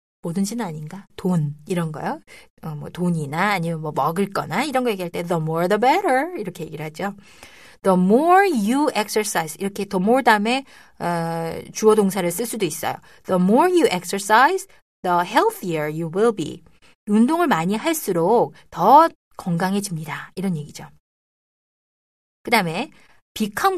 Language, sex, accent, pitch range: Korean, female, native, 170-235 Hz